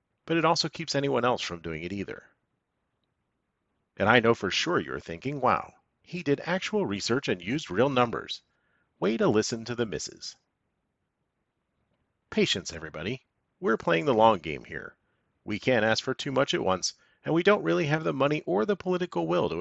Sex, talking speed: male, 185 wpm